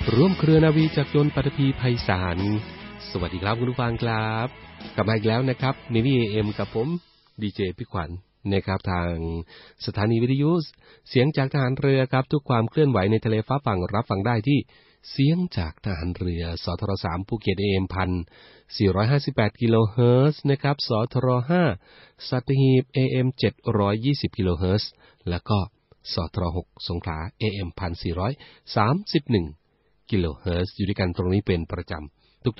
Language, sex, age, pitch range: Thai, male, 30-49, 95-125 Hz